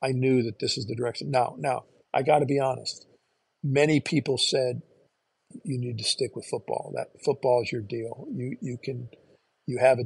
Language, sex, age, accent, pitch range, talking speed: English, male, 50-69, American, 130-150 Hz, 205 wpm